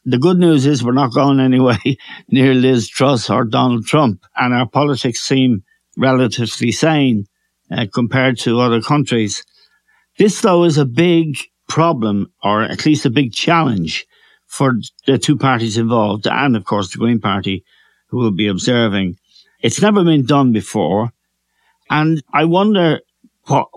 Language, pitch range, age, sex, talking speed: English, 115-150 Hz, 60-79, male, 155 wpm